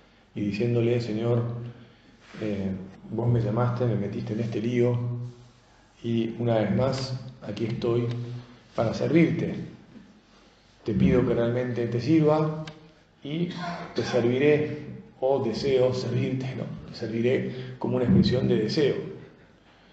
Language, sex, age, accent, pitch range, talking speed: Spanish, male, 40-59, Argentinian, 110-135 Hz, 120 wpm